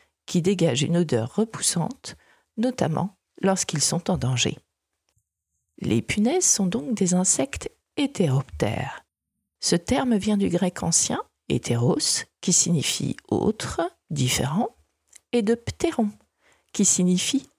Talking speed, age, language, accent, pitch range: 115 wpm, 50-69, French, French, 150-230 Hz